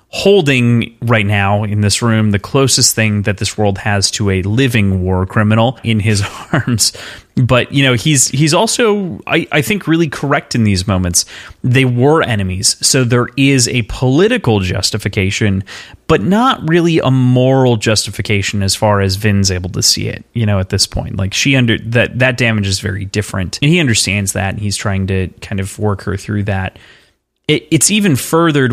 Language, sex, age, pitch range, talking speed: English, male, 30-49, 100-125 Hz, 190 wpm